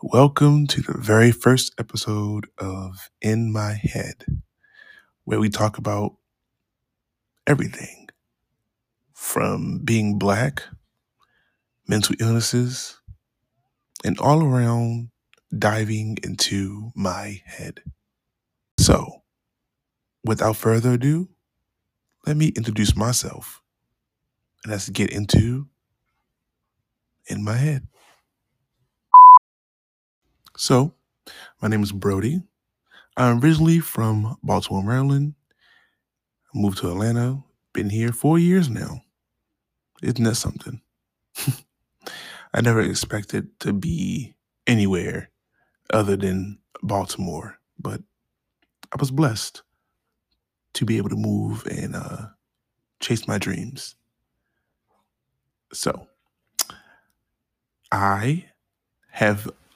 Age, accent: 20-39, American